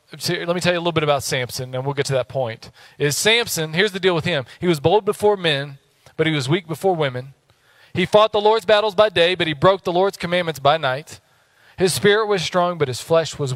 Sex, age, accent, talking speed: male, 40-59, American, 250 wpm